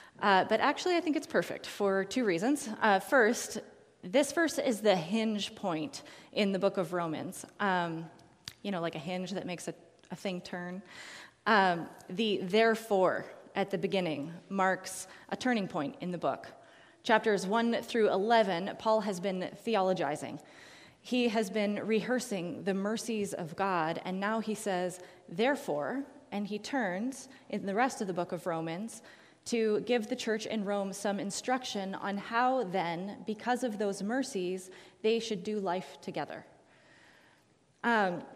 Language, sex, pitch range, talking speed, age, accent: English, female, 180-220 Hz, 160 wpm, 20-39, American